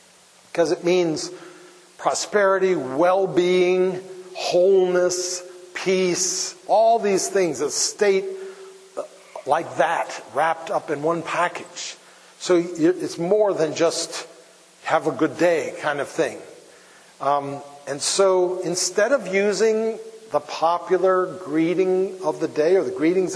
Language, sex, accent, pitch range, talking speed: English, male, American, 155-195 Hz, 120 wpm